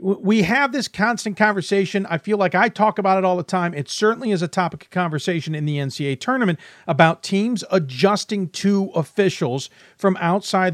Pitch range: 145-195 Hz